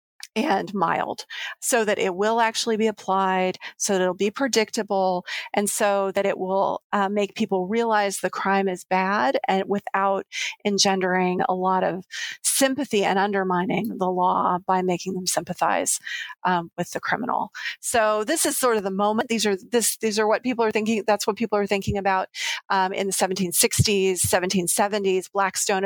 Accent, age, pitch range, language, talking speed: American, 40-59, 185-210 Hz, English, 170 wpm